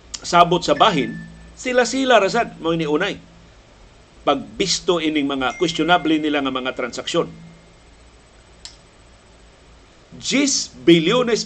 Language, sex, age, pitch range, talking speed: Filipino, male, 50-69, 150-190 Hz, 90 wpm